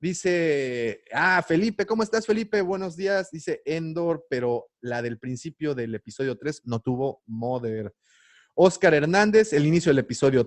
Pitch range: 125-195 Hz